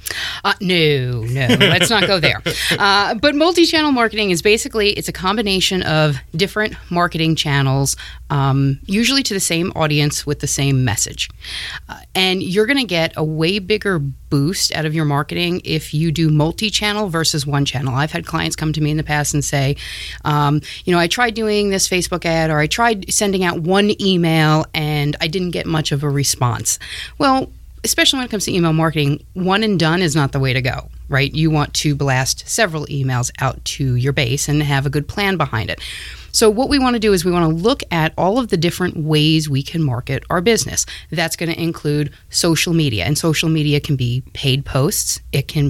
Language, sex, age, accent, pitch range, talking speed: English, female, 30-49, American, 145-190 Hz, 205 wpm